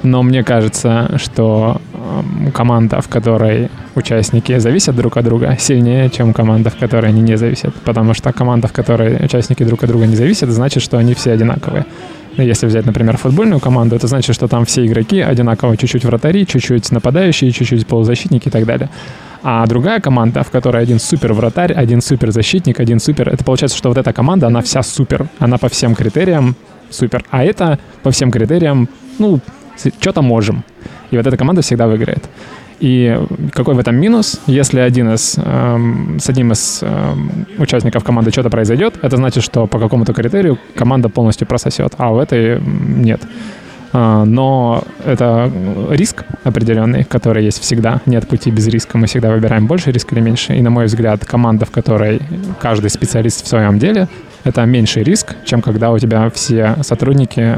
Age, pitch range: 20-39, 115-130 Hz